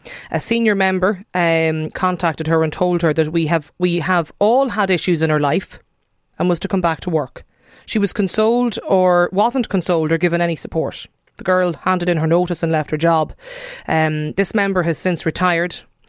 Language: English